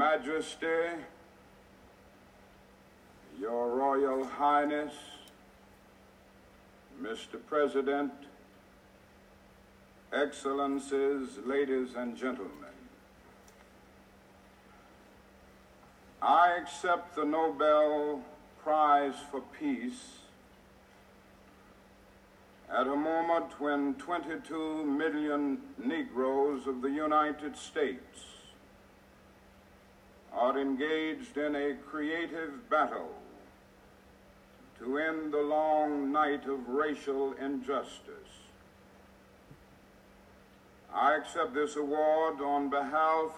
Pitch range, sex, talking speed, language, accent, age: 135-160 Hz, male, 70 wpm, English, American, 60-79